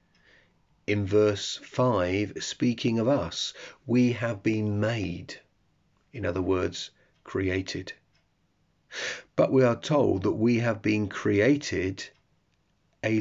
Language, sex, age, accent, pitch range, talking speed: English, male, 40-59, British, 95-120 Hz, 110 wpm